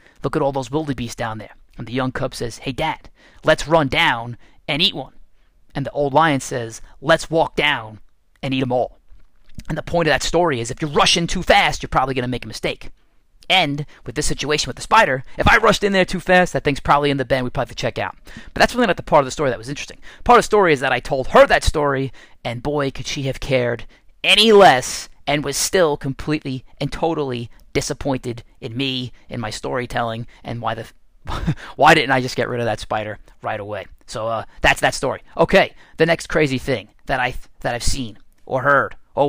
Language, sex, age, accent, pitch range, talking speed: English, male, 30-49, American, 125-160 Hz, 230 wpm